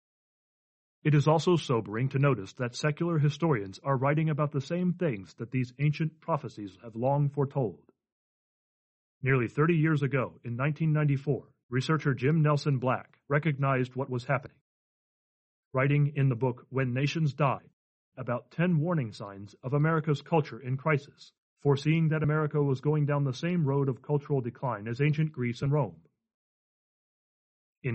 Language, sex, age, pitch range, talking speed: English, male, 40-59, 130-155 Hz, 150 wpm